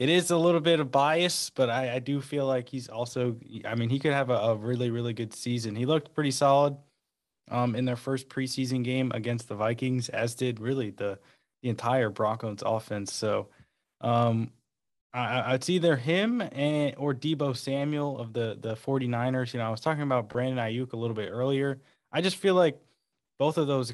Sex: male